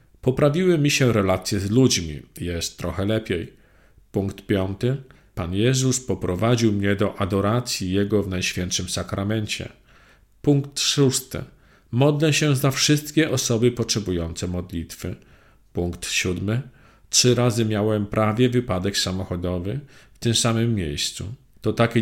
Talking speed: 120 wpm